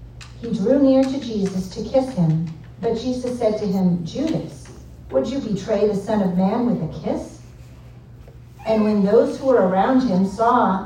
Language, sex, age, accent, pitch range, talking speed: English, female, 50-69, American, 175-230 Hz, 175 wpm